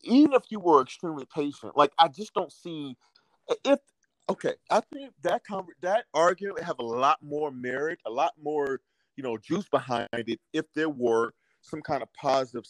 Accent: American